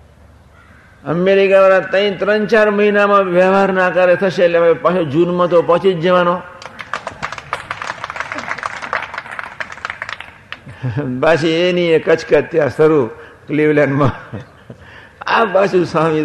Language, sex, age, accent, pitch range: Gujarati, male, 60-79, native, 105-155 Hz